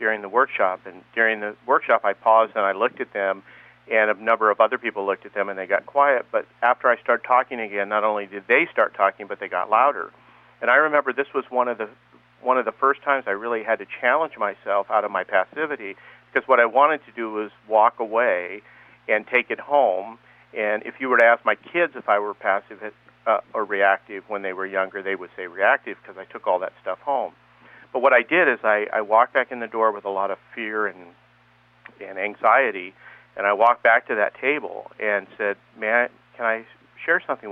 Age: 50-69